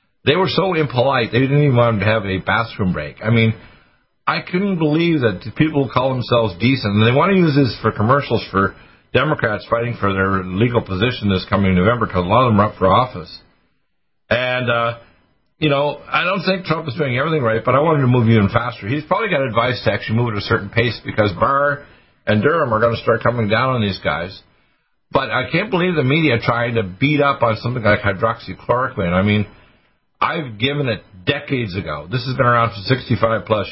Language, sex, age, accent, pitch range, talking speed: English, male, 50-69, American, 105-140 Hz, 215 wpm